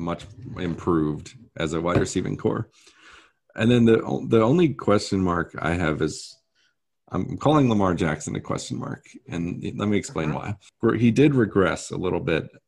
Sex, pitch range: male, 85-110 Hz